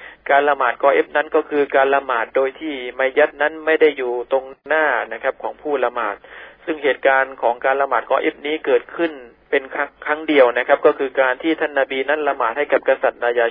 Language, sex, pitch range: Thai, male, 125-150 Hz